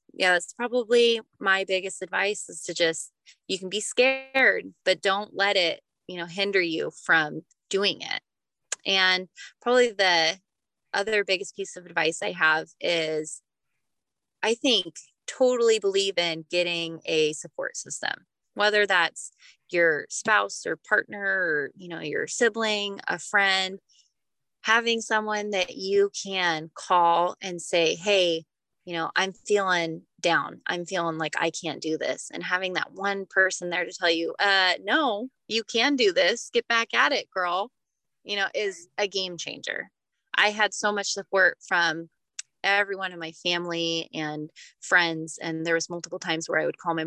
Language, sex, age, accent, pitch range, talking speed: English, female, 20-39, American, 170-205 Hz, 160 wpm